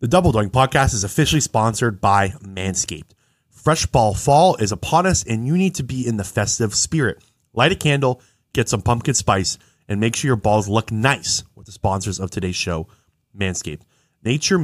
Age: 30-49